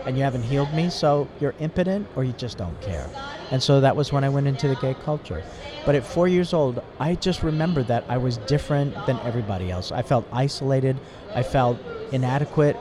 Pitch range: 120-145 Hz